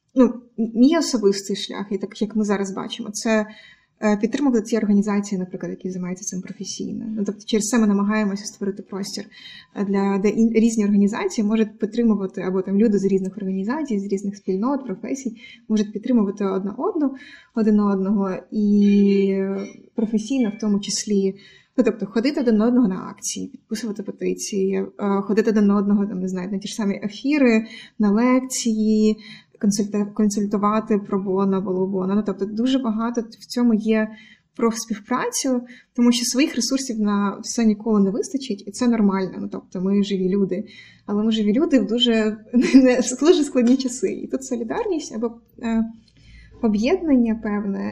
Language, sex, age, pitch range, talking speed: Ukrainian, female, 20-39, 200-235 Hz, 155 wpm